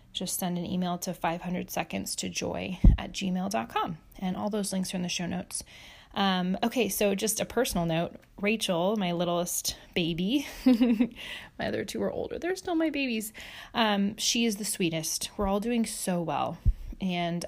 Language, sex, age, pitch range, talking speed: English, female, 20-39, 180-225 Hz, 175 wpm